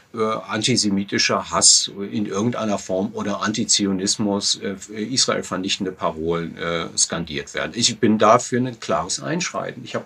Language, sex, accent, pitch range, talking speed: German, male, German, 105-140 Hz, 125 wpm